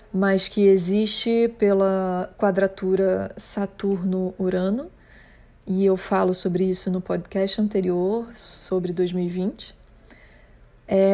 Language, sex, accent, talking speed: Portuguese, female, Brazilian, 90 wpm